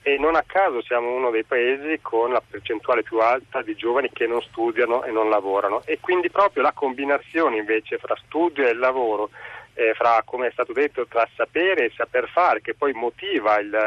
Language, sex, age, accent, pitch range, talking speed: Italian, male, 40-59, native, 140-215 Hz, 200 wpm